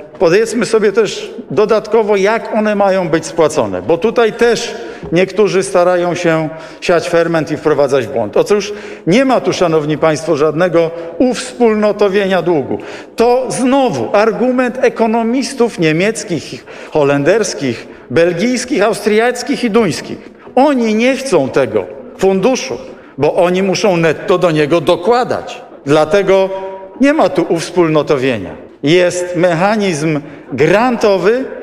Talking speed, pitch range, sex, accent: 110 wpm, 180-230 Hz, male, native